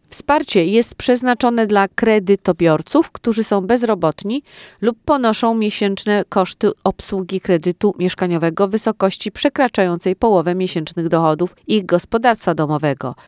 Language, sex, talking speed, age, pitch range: Polish, female, 110 wpm, 40-59, 175-215 Hz